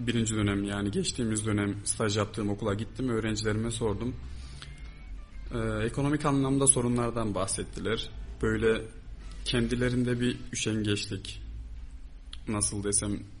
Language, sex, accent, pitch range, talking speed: Turkish, male, native, 105-130 Hz, 100 wpm